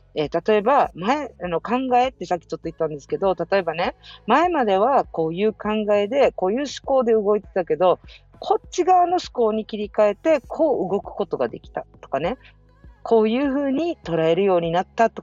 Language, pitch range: Japanese, 160-250 Hz